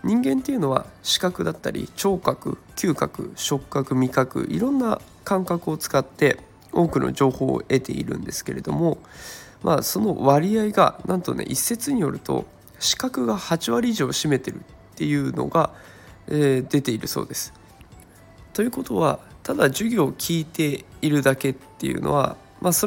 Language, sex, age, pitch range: Japanese, male, 20-39, 135-190 Hz